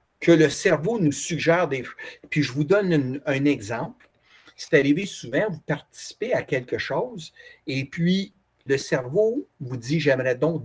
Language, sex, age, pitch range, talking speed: French, male, 60-79, 145-225 Hz, 160 wpm